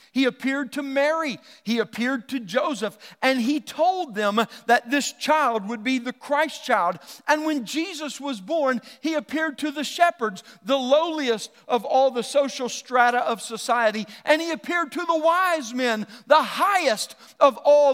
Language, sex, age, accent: English, male, 50-69, American